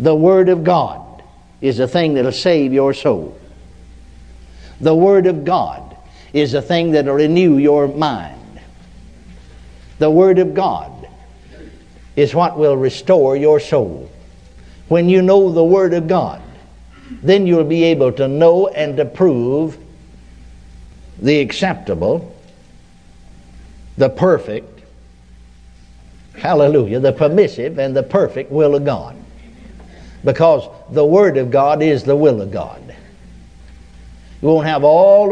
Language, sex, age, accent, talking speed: English, male, 60-79, American, 130 wpm